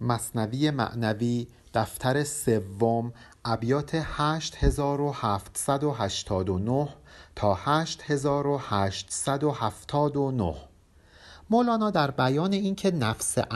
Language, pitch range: Persian, 110-155 Hz